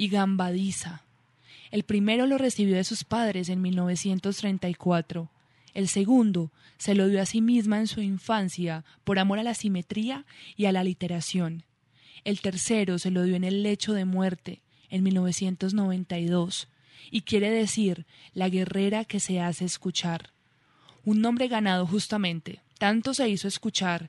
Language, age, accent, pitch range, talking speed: Spanish, 20-39, Colombian, 180-215 Hz, 150 wpm